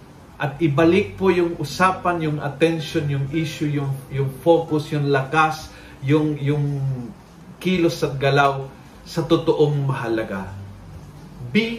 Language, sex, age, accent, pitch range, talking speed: Filipino, male, 50-69, native, 135-170 Hz, 115 wpm